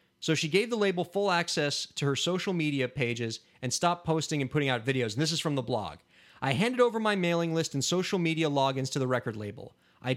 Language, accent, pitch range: English, American, 130-175 Hz